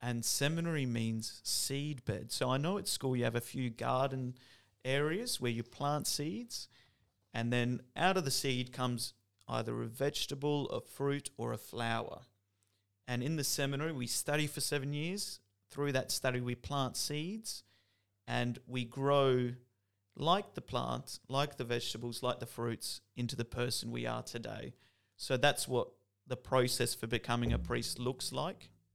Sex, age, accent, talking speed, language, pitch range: male, 40-59, Australian, 165 wpm, English, 115-135 Hz